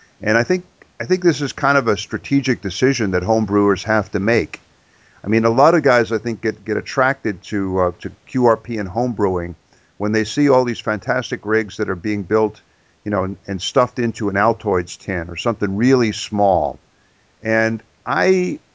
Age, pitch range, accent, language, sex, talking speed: 50-69, 100-125 Hz, American, English, male, 190 wpm